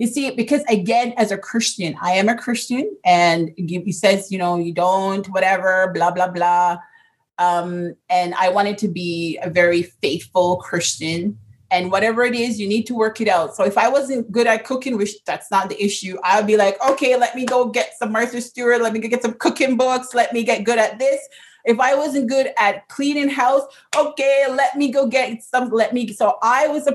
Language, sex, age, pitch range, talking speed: English, female, 30-49, 195-265 Hz, 215 wpm